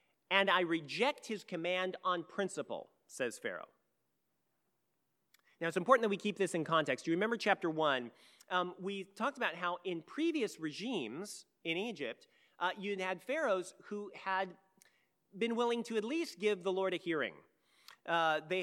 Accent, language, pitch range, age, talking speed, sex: American, English, 175-230 Hz, 40-59, 160 wpm, male